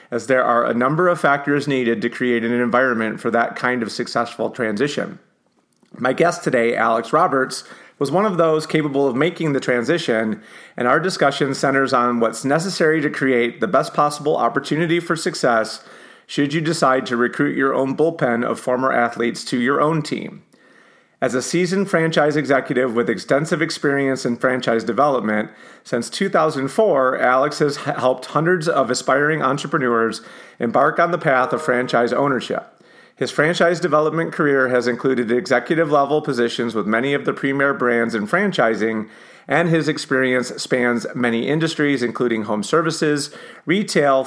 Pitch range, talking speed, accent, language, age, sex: 120-150 Hz, 155 wpm, American, English, 30-49, male